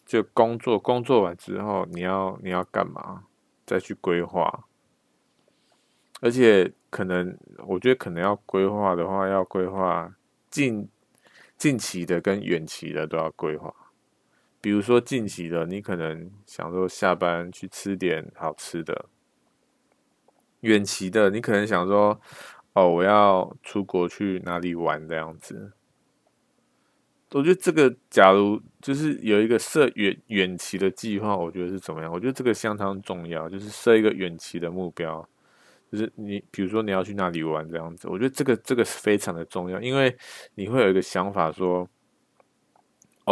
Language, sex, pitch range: Chinese, male, 90-110 Hz